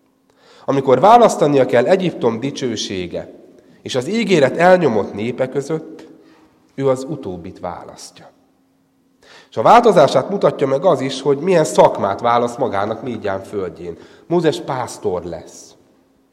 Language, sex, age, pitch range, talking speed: Hungarian, male, 30-49, 100-145 Hz, 120 wpm